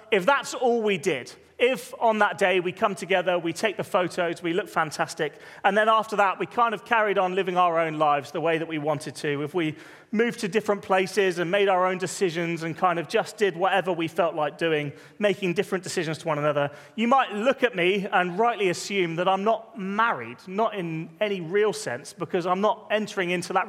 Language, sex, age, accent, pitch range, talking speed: English, male, 30-49, British, 165-210 Hz, 225 wpm